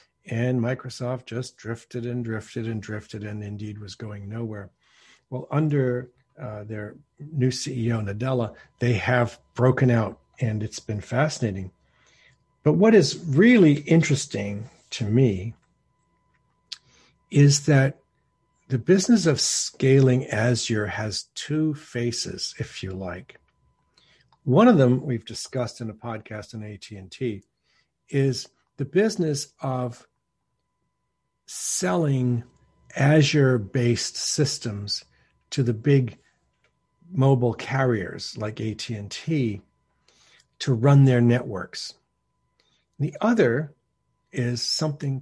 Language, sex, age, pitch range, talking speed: English, male, 50-69, 105-140 Hz, 105 wpm